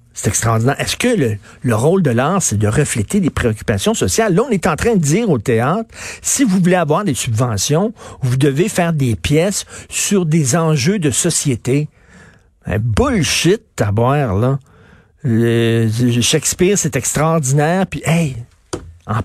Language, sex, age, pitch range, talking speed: French, male, 50-69, 115-160 Hz, 155 wpm